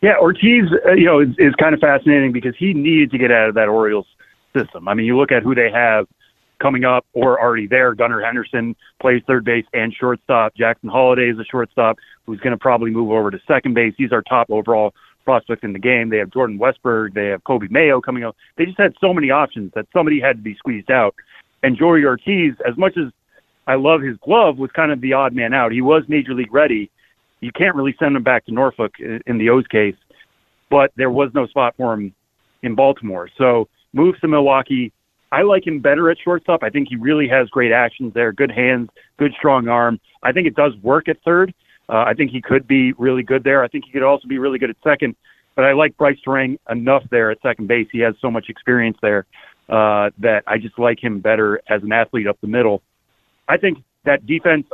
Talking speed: 230 wpm